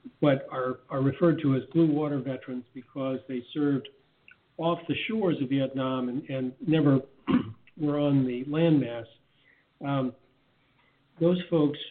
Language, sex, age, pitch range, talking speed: English, male, 50-69, 130-150 Hz, 130 wpm